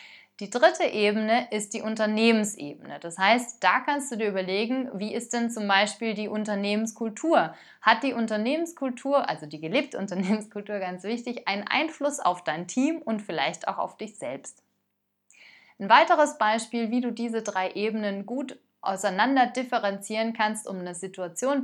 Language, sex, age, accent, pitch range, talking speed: German, female, 30-49, German, 200-265 Hz, 155 wpm